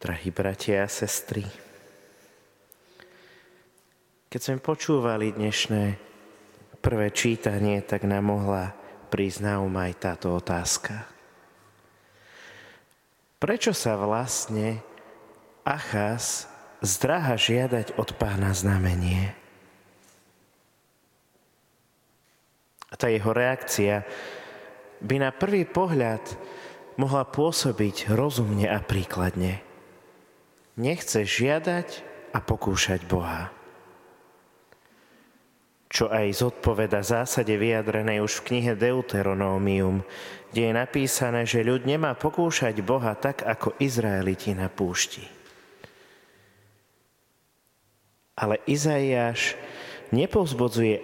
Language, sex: Slovak, male